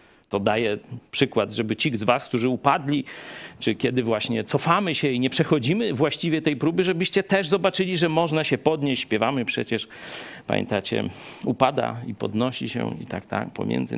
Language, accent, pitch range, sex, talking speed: Polish, native, 120-180 Hz, male, 165 wpm